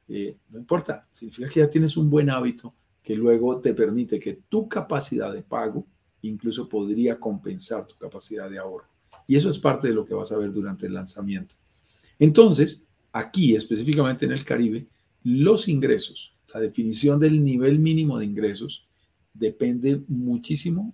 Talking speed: 160 wpm